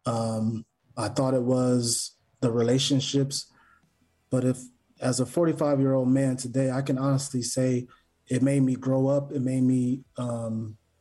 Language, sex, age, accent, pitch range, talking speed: English, male, 30-49, American, 120-135 Hz, 145 wpm